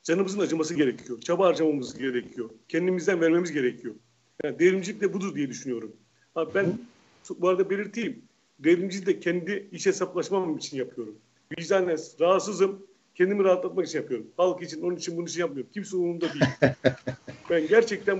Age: 40-59